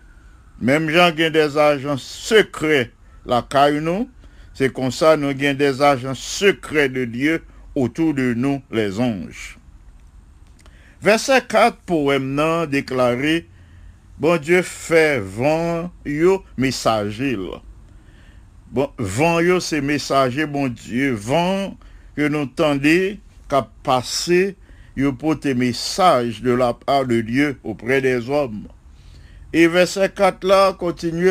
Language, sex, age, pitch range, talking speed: English, male, 60-79, 115-170 Hz, 125 wpm